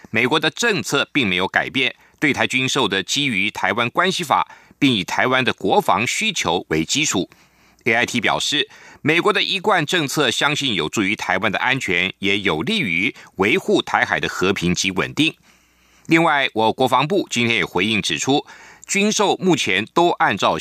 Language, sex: Chinese, male